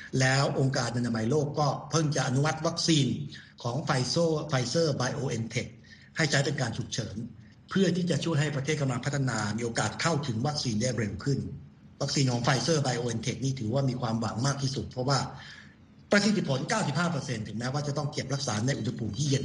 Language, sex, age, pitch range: Thai, male, 60-79, 120-150 Hz